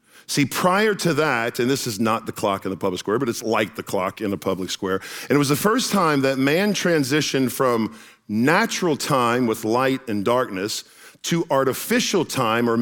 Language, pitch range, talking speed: English, 115-160 Hz, 200 wpm